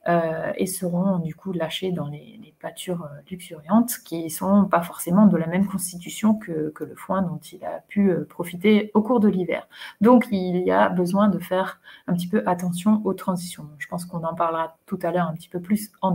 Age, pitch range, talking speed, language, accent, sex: 30-49, 170-205 Hz, 225 wpm, French, French, female